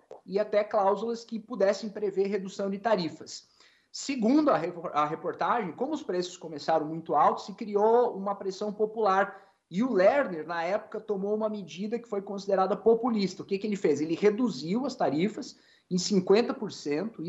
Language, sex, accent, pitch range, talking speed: Portuguese, male, Brazilian, 175-230 Hz, 160 wpm